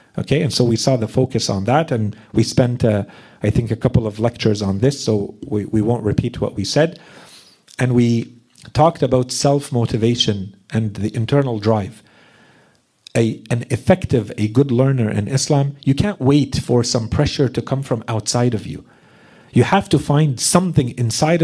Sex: male